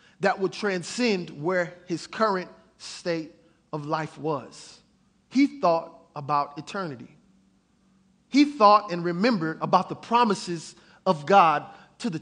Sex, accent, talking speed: male, American, 125 wpm